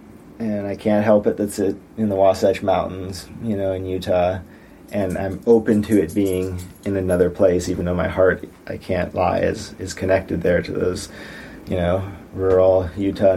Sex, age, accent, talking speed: male, 30-49, American, 180 wpm